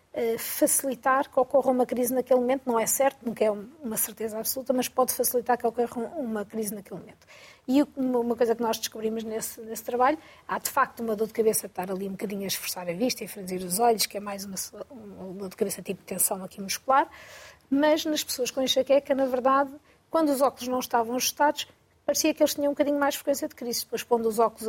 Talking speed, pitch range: 225 wpm, 210-265 Hz